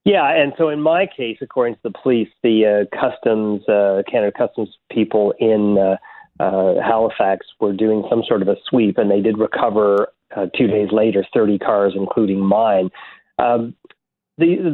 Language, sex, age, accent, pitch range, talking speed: English, male, 40-59, American, 100-115 Hz, 170 wpm